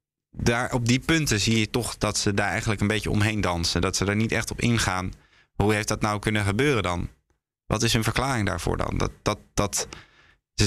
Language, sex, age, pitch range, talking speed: Dutch, male, 20-39, 100-115 Hz, 220 wpm